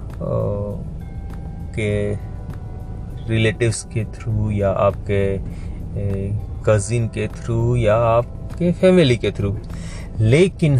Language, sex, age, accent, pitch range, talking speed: Hindi, male, 30-49, native, 95-115 Hz, 85 wpm